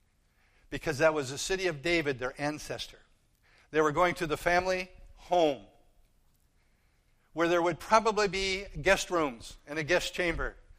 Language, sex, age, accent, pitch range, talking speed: English, male, 50-69, American, 140-195 Hz, 150 wpm